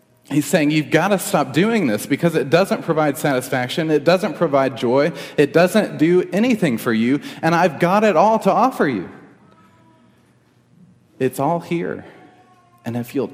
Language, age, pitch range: English, 40-59, 95-140 Hz